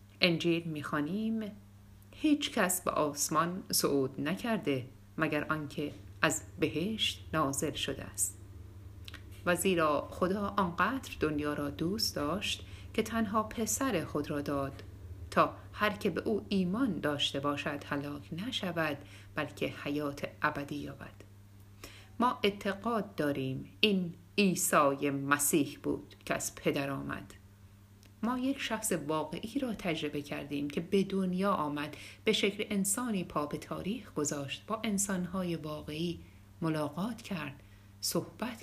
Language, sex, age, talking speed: Persian, female, 50-69, 120 wpm